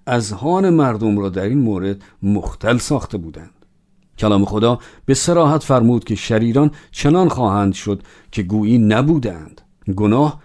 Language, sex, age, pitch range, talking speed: Persian, male, 50-69, 100-135 Hz, 140 wpm